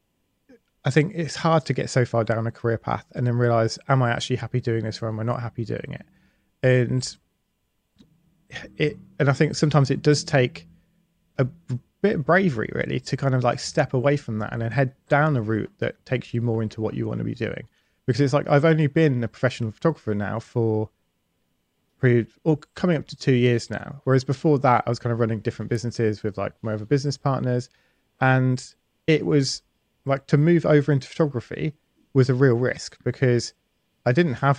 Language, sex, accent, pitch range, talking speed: English, male, British, 115-145 Hz, 205 wpm